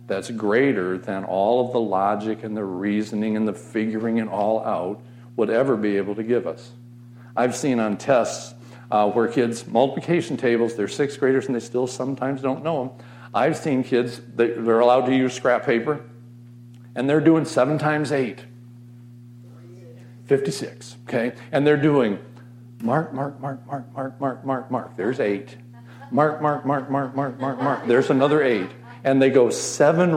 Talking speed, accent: 175 wpm, American